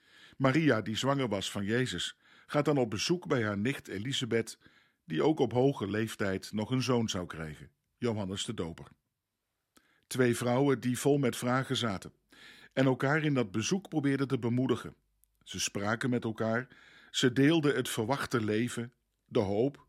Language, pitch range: Dutch, 110-135 Hz